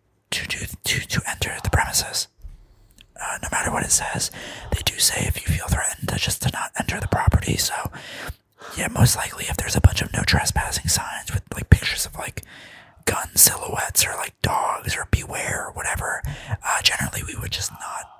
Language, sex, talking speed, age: English, male, 190 wpm, 20-39